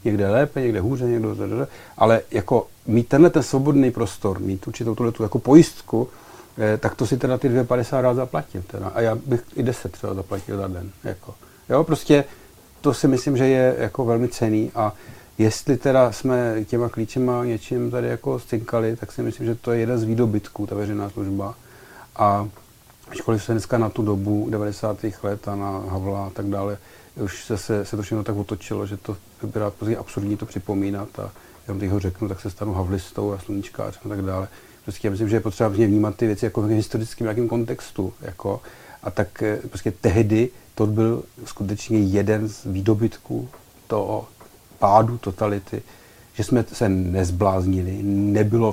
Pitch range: 100-120 Hz